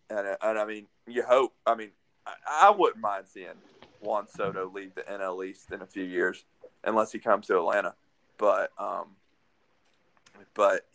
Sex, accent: male, American